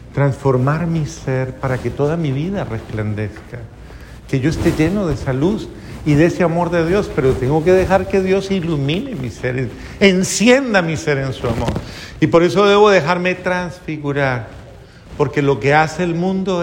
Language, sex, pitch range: Spanish, male, 120-155 Hz